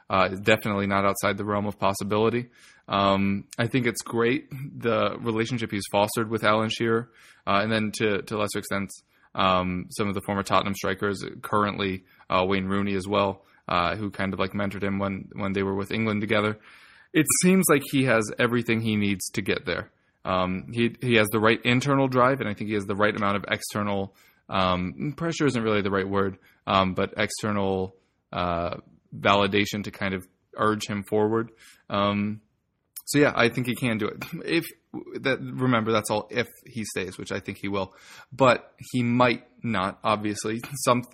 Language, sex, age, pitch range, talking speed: English, male, 20-39, 100-115 Hz, 190 wpm